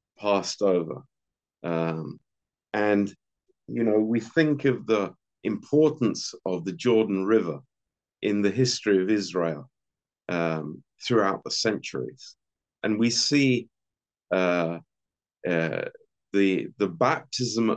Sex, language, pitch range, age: male, Romanian, 90-115 Hz, 50-69